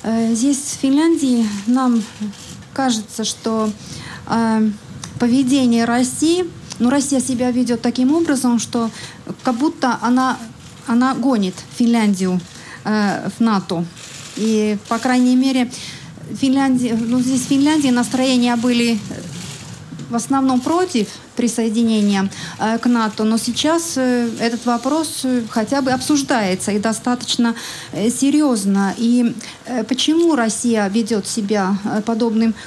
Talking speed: 105 wpm